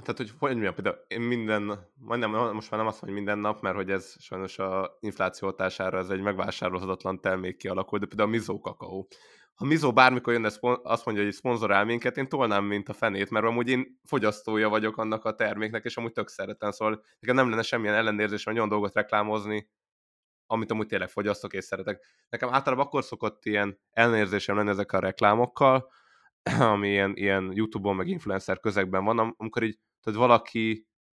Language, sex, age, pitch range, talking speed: Hungarian, male, 20-39, 100-115 Hz, 180 wpm